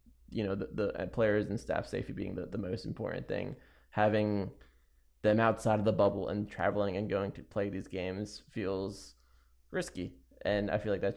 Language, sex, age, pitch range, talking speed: English, male, 20-39, 65-105 Hz, 195 wpm